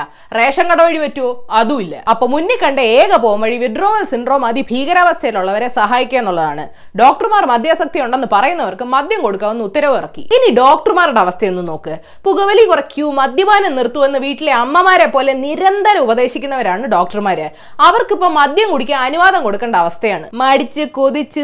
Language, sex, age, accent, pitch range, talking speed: Malayalam, female, 20-39, native, 230-335 Hz, 120 wpm